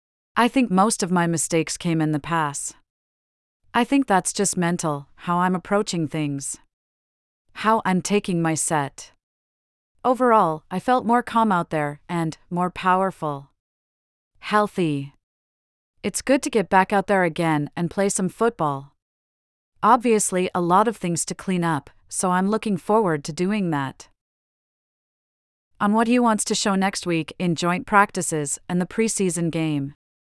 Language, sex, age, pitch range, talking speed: English, female, 40-59, 150-205 Hz, 150 wpm